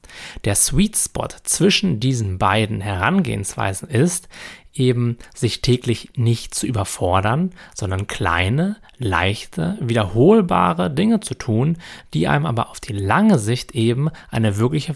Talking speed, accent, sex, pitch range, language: 125 wpm, German, male, 110-145 Hz, German